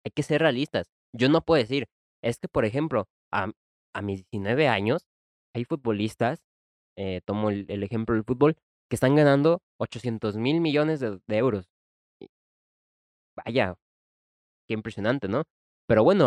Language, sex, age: Spanish, male, 20-39